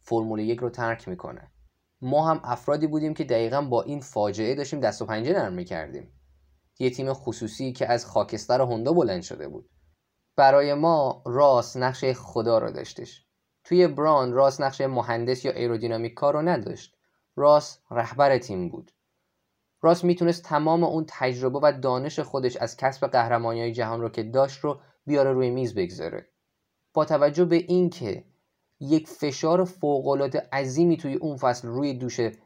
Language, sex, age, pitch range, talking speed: Persian, male, 20-39, 115-145 Hz, 155 wpm